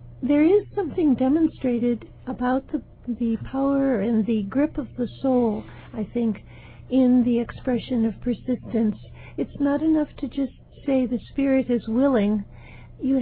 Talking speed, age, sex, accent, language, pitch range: 145 wpm, 60-79, female, American, English, 225-265 Hz